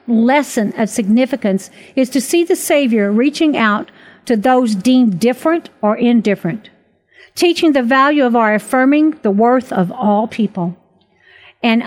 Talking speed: 140 wpm